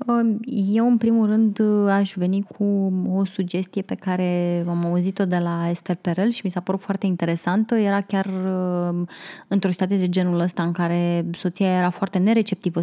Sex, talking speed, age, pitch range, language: female, 170 wpm, 20-39, 175-215 Hz, Romanian